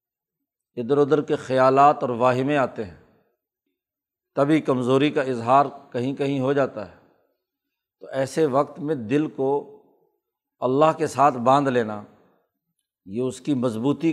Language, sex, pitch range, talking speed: Urdu, male, 130-160 Hz, 140 wpm